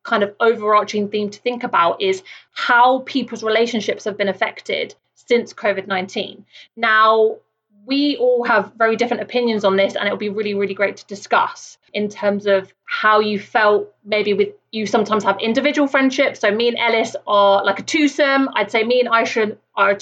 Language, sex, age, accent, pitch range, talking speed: English, female, 30-49, British, 205-250 Hz, 185 wpm